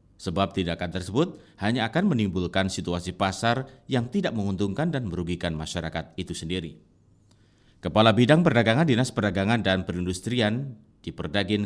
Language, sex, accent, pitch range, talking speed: Indonesian, male, native, 90-115 Hz, 130 wpm